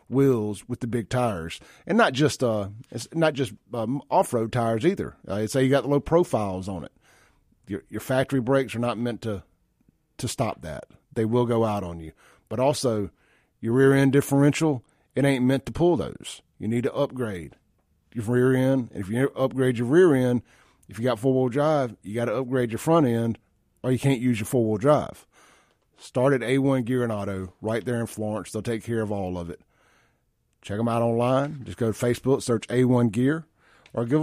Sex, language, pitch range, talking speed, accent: male, English, 110-145 Hz, 205 wpm, American